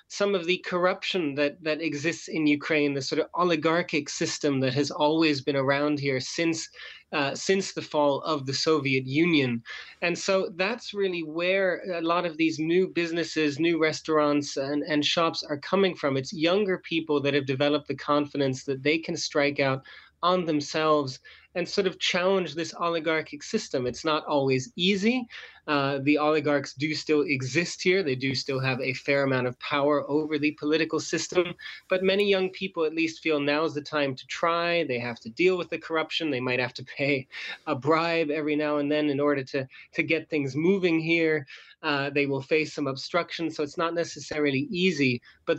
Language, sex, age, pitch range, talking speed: English, male, 30-49, 145-170 Hz, 190 wpm